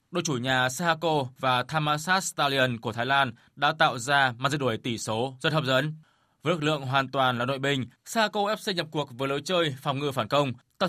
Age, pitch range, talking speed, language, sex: 20-39, 130-165 Hz, 225 wpm, Vietnamese, male